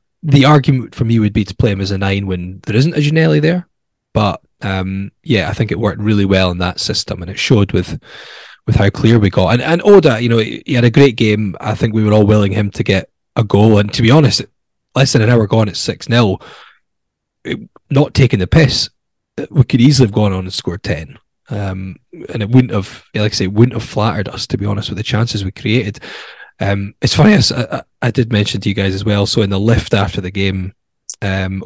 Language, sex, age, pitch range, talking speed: English, male, 10-29, 100-125 Hz, 240 wpm